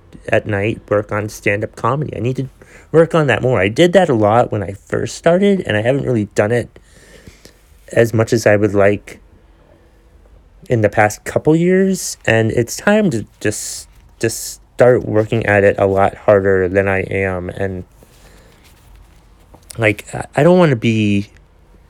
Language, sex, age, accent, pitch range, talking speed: English, male, 30-49, American, 95-120 Hz, 170 wpm